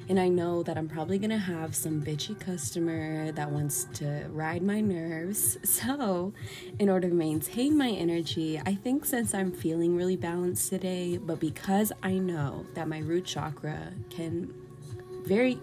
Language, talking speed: English, 165 wpm